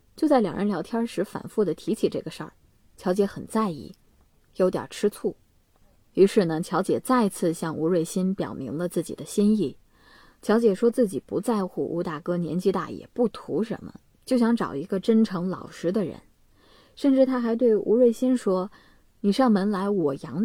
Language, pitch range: Chinese, 175-225 Hz